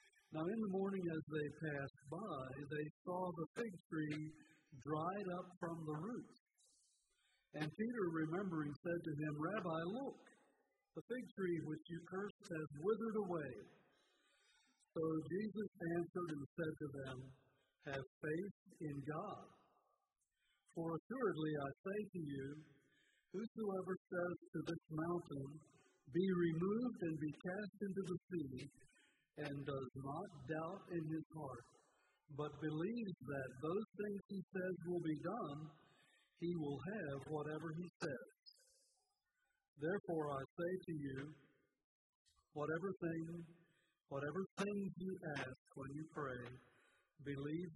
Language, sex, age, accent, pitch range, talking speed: English, male, 50-69, American, 150-185 Hz, 130 wpm